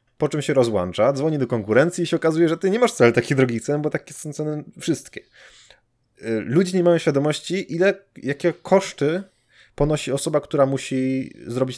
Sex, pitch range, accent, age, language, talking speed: male, 115-150 Hz, Polish, 20-39, English, 180 wpm